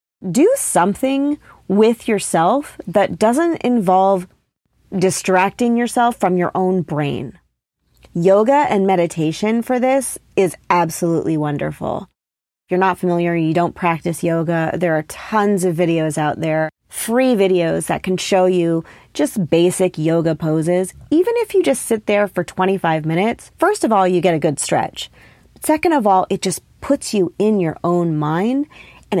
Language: English